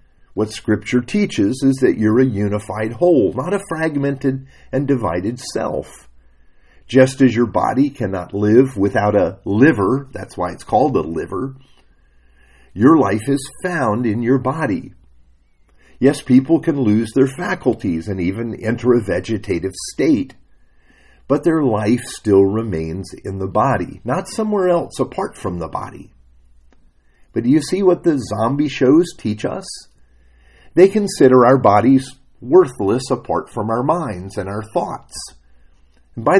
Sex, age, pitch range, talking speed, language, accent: male, 50-69, 90-135 Hz, 145 wpm, English, American